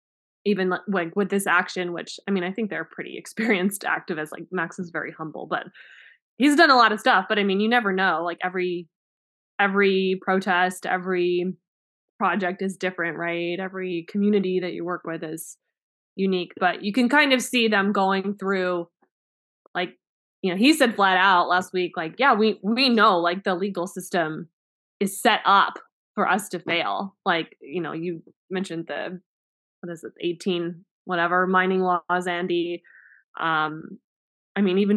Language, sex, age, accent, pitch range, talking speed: English, female, 20-39, American, 175-210 Hz, 175 wpm